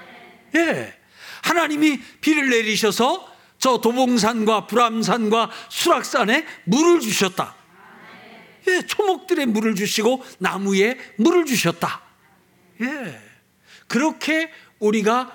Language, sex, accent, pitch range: Korean, male, native, 180-255 Hz